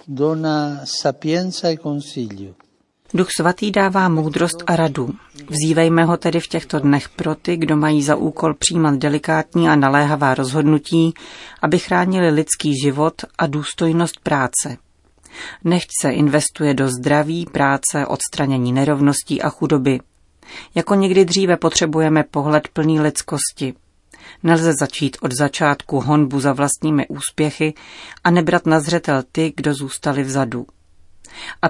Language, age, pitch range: Czech, 40-59, 145-165 Hz